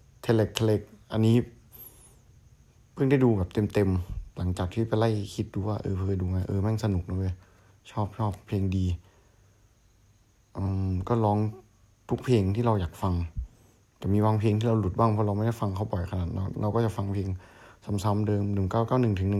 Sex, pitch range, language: male, 95-115 Hz, Thai